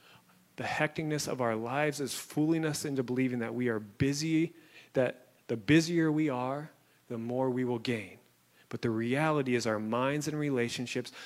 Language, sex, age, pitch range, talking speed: English, male, 30-49, 115-135 Hz, 170 wpm